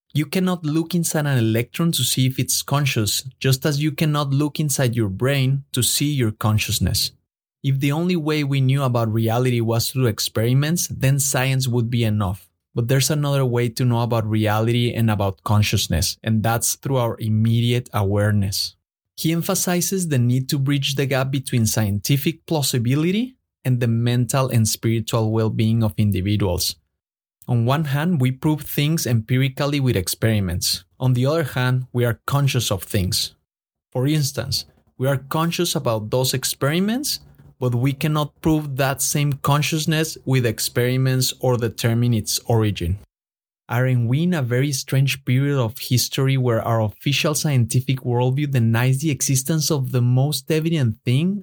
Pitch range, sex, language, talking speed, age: 115-145 Hz, male, English, 160 wpm, 30-49